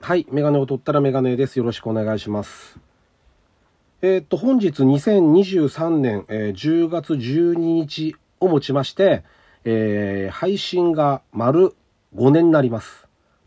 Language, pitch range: Japanese, 125-180 Hz